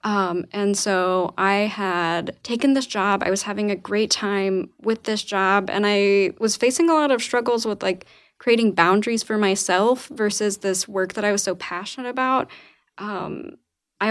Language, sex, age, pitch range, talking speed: English, female, 20-39, 190-230 Hz, 180 wpm